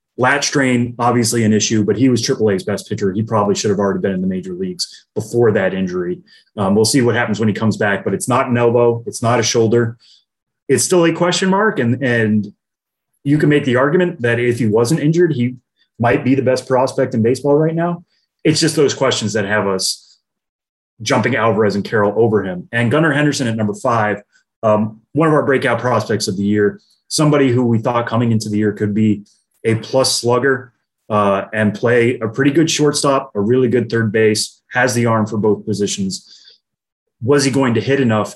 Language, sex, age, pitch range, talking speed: English, male, 30-49, 105-130 Hz, 210 wpm